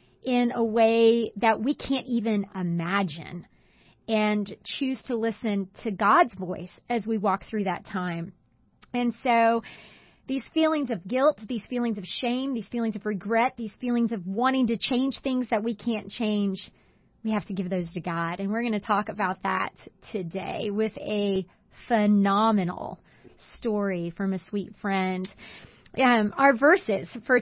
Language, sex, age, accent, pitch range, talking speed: English, female, 30-49, American, 200-245 Hz, 160 wpm